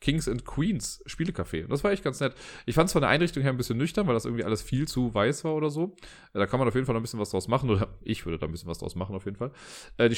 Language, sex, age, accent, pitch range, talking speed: German, male, 30-49, German, 95-120 Hz, 320 wpm